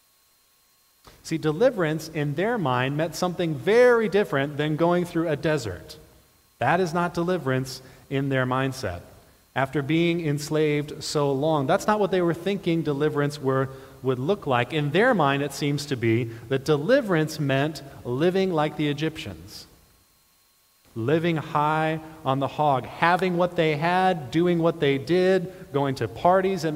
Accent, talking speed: American, 150 wpm